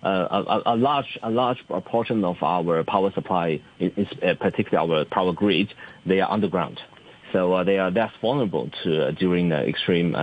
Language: English